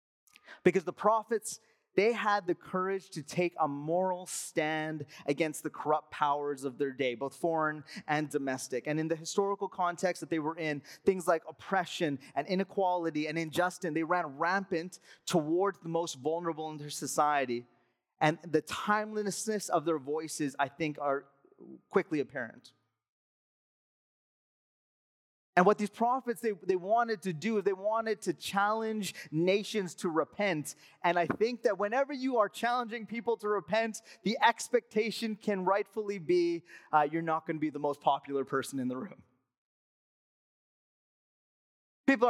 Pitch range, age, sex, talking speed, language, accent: 155-200 Hz, 30-49, male, 150 wpm, English, American